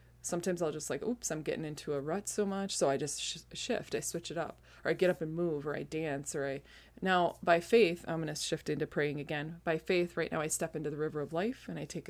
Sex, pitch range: female, 145-170 Hz